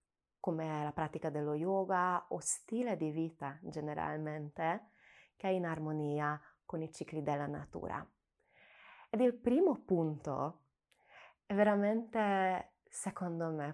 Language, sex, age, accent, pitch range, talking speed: Italian, female, 20-39, native, 155-205 Hz, 120 wpm